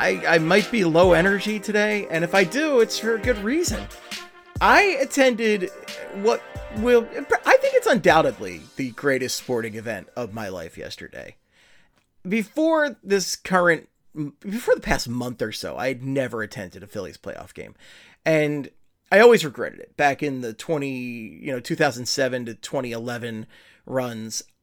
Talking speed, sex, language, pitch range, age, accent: 155 wpm, male, English, 135-210 Hz, 30-49, American